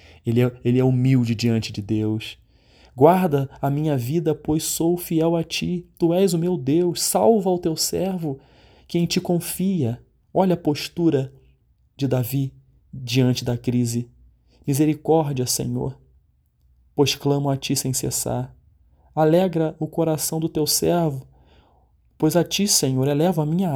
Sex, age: male, 30-49